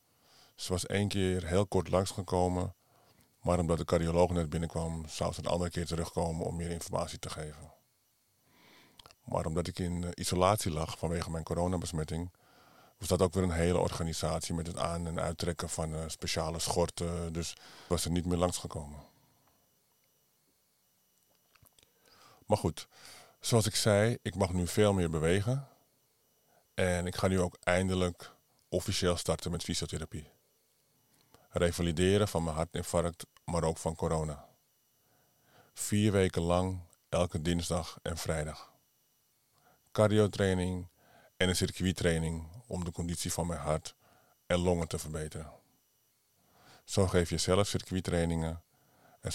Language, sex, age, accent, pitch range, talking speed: Dutch, male, 50-69, Dutch, 80-90 Hz, 135 wpm